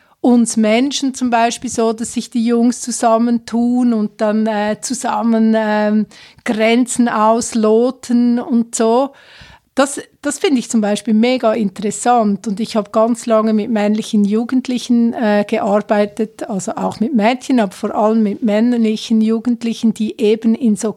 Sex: female